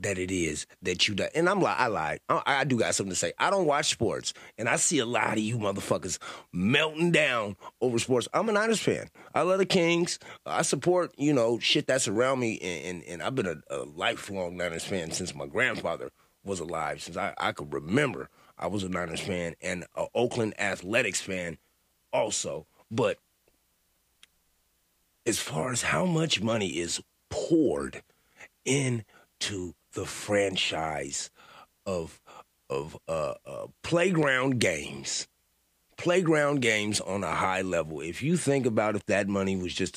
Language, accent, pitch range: English, American, 90-135 Hz